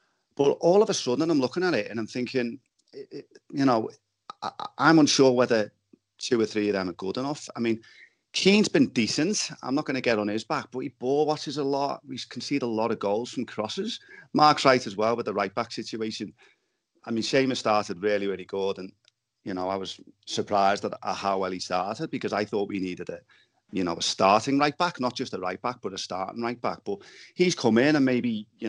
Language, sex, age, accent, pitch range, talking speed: English, male, 30-49, British, 100-145 Hz, 225 wpm